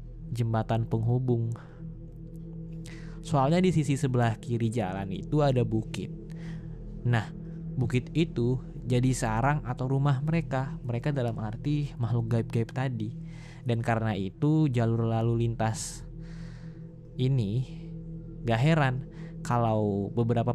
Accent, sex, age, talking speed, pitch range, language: native, male, 20-39, 105 wpm, 115-160 Hz, Indonesian